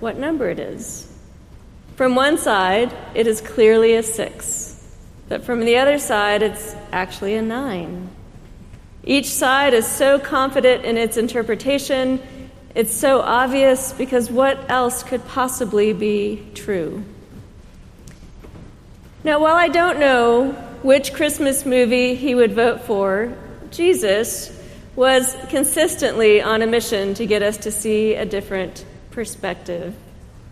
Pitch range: 215-270 Hz